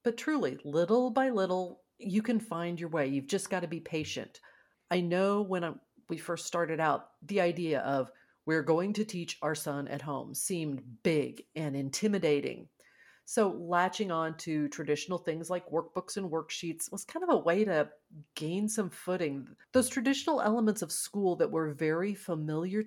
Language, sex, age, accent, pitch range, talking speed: English, female, 40-59, American, 160-220 Hz, 175 wpm